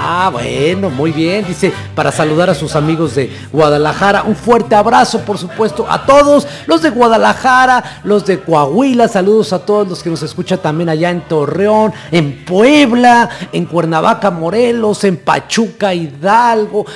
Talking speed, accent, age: 155 wpm, Mexican, 40-59